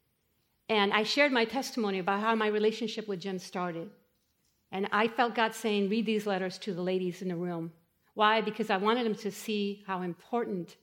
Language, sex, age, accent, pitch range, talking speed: English, female, 50-69, American, 210-285 Hz, 195 wpm